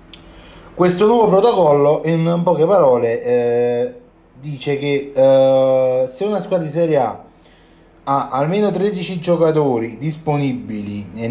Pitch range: 95-155 Hz